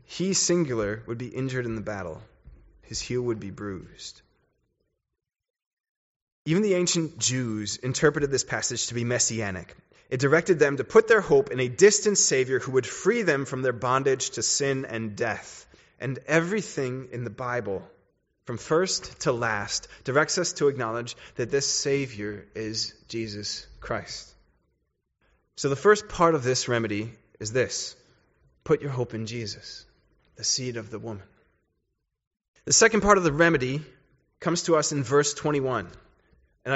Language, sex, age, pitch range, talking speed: English, male, 20-39, 120-175 Hz, 155 wpm